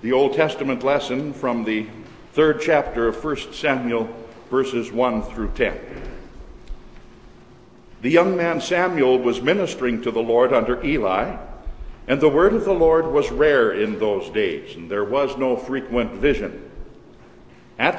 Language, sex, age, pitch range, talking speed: English, male, 60-79, 125-170 Hz, 145 wpm